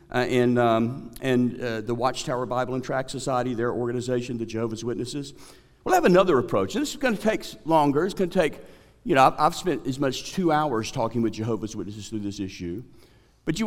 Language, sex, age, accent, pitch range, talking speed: English, male, 50-69, American, 125-175 Hz, 205 wpm